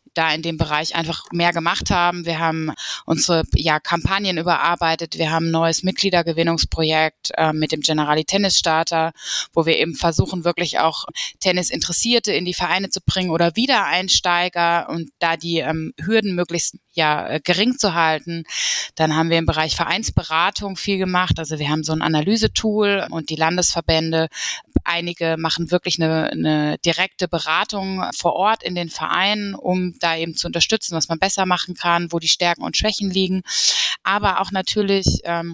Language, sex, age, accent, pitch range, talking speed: German, female, 20-39, German, 160-185 Hz, 160 wpm